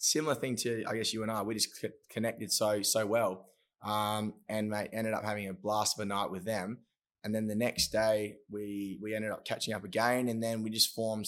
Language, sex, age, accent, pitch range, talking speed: English, male, 20-39, Australian, 95-110 Hz, 235 wpm